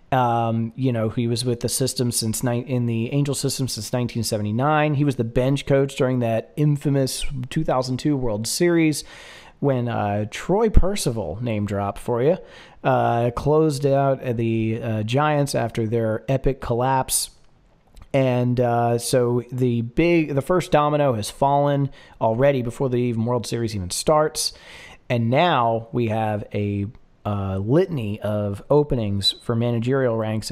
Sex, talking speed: male, 145 wpm